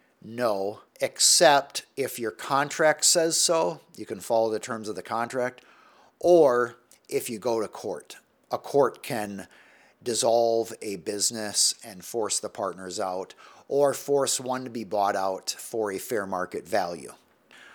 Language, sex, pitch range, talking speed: English, male, 110-145 Hz, 150 wpm